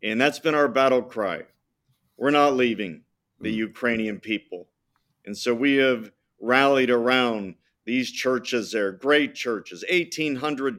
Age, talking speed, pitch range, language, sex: 50-69, 135 wpm, 115-145 Hz, English, male